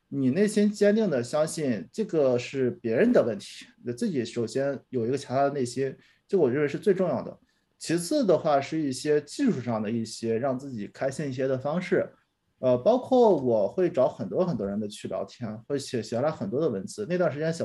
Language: Chinese